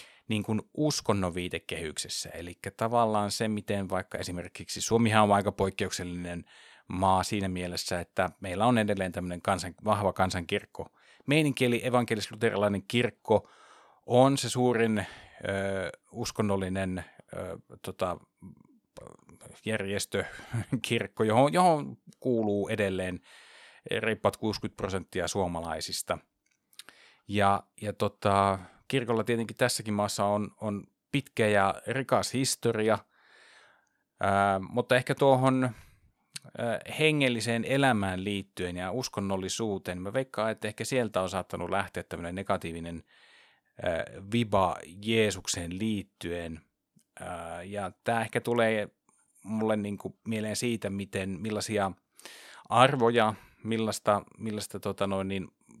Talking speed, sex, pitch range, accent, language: 100 wpm, male, 95-115 Hz, native, Finnish